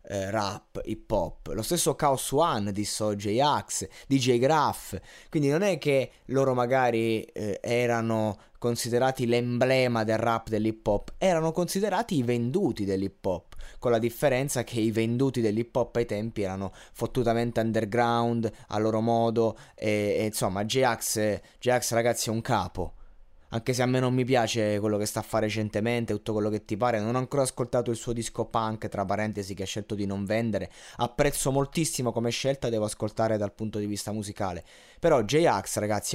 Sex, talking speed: male, 175 wpm